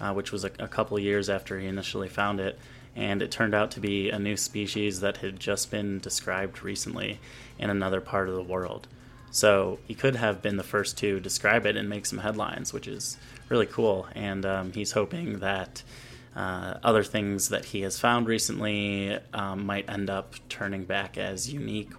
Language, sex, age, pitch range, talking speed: English, male, 20-39, 95-115 Hz, 195 wpm